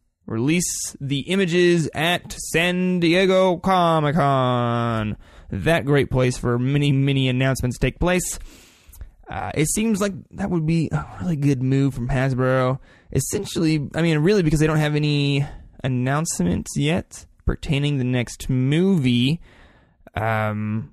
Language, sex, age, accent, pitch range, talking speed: English, male, 20-39, American, 120-155 Hz, 130 wpm